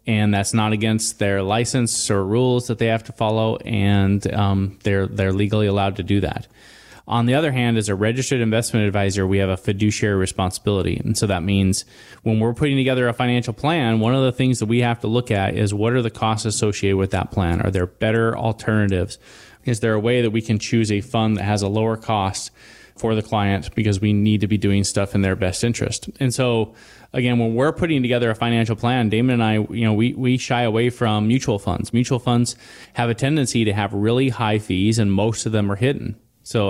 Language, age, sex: English, 20-39, male